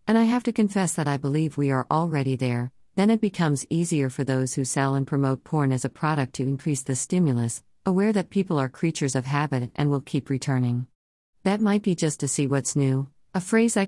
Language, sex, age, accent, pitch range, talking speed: English, female, 50-69, American, 130-160 Hz, 225 wpm